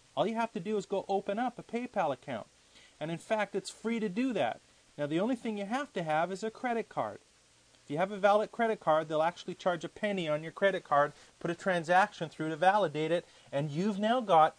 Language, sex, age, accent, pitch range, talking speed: English, male, 30-49, American, 155-225 Hz, 245 wpm